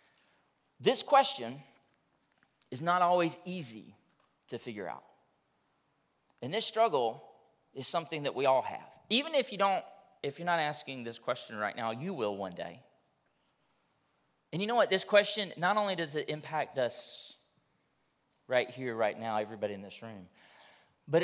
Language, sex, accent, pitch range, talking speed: English, male, American, 130-185 Hz, 155 wpm